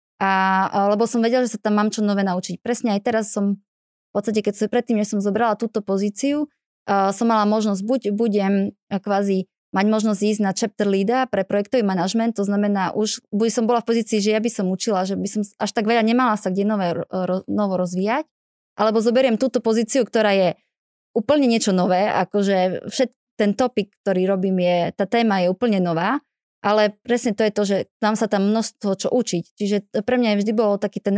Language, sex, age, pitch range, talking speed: Slovak, female, 20-39, 195-225 Hz, 205 wpm